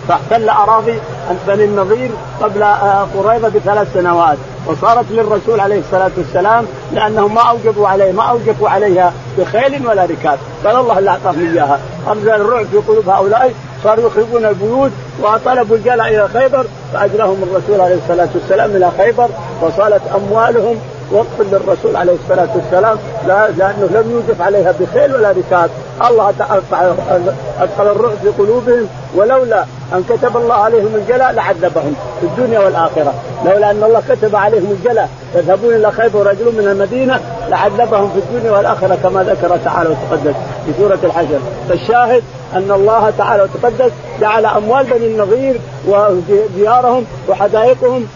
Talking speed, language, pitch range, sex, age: 135 wpm, Arabic, 180-230 Hz, male, 50-69